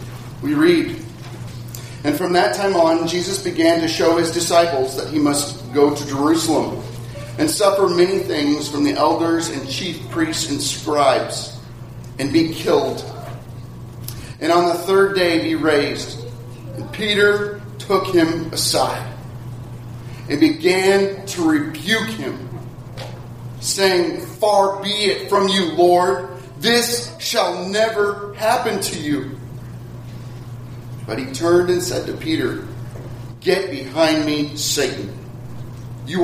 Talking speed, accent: 125 wpm, American